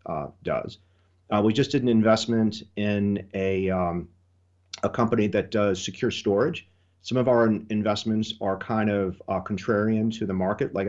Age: 40-59